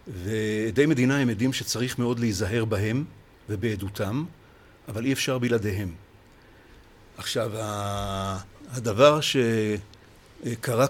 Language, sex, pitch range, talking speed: Hebrew, male, 105-125 Hz, 85 wpm